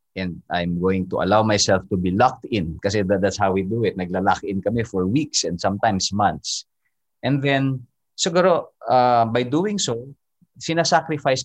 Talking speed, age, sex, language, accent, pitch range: 175 wpm, 20-39, male, English, Filipino, 100-145 Hz